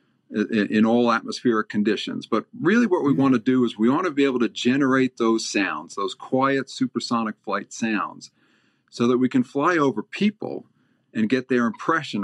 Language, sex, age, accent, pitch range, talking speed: English, male, 50-69, American, 110-130 Hz, 180 wpm